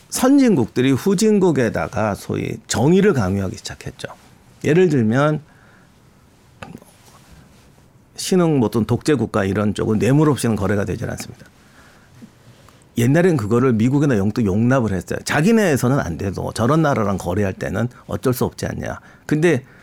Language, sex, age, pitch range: Korean, male, 50-69, 110-155 Hz